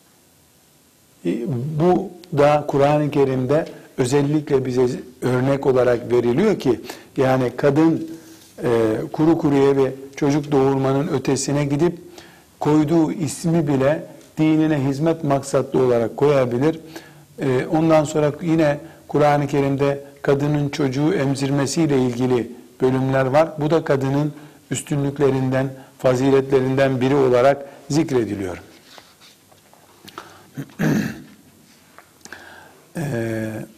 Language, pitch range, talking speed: Turkish, 125-145 Hz, 85 wpm